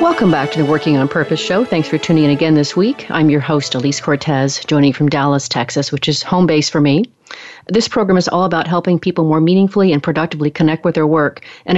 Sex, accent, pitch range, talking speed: female, American, 145-170 Hz, 235 wpm